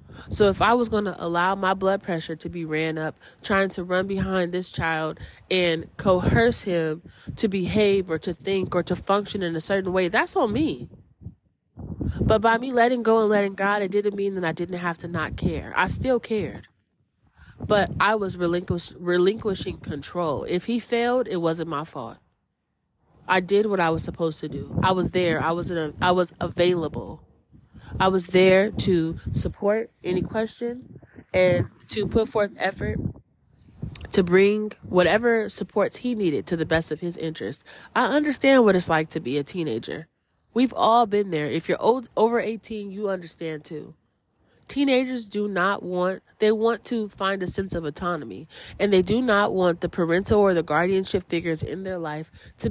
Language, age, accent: English, 20-39, American